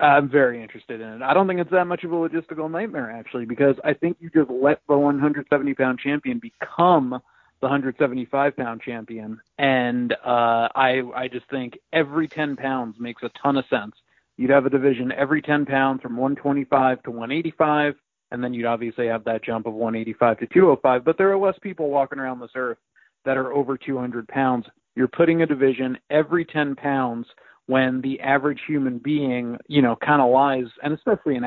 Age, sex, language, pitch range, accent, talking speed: 40-59, male, English, 125-150 Hz, American, 190 wpm